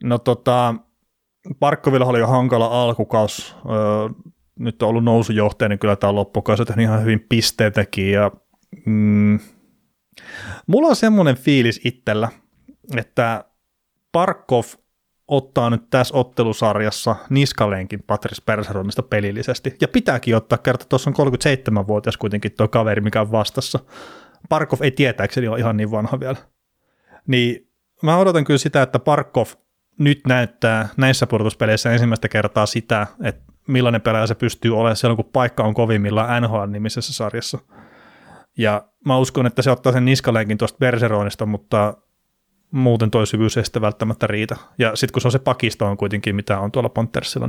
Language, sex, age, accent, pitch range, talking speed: Finnish, male, 30-49, native, 110-130 Hz, 145 wpm